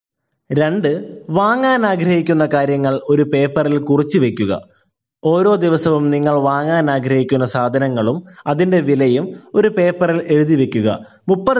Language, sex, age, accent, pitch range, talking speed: Malayalam, male, 20-39, native, 140-195 Hz, 110 wpm